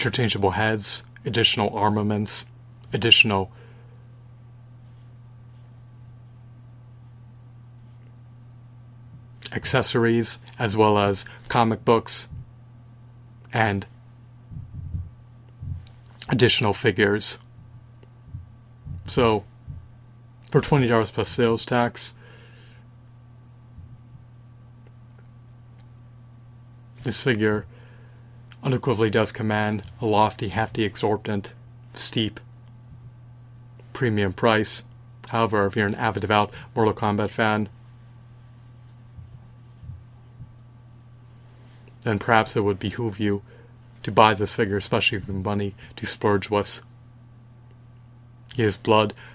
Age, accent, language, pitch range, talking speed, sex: 30-49, American, English, 110-120 Hz, 70 wpm, male